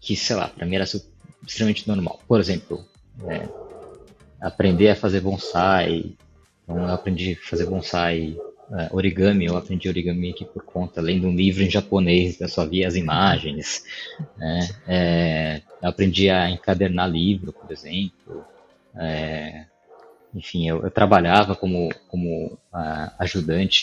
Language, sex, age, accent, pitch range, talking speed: Portuguese, male, 20-39, Brazilian, 90-135 Hz, 145 wpm